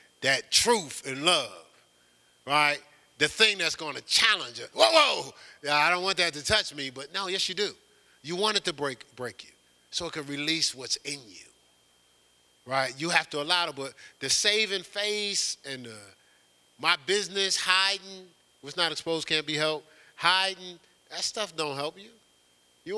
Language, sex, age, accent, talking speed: English, male, 40-59, American, 180 wpm